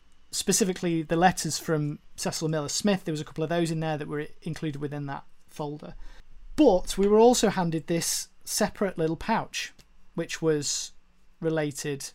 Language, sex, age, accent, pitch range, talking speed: English, male, 20-39, British, 150-185 Hz, 160 wpm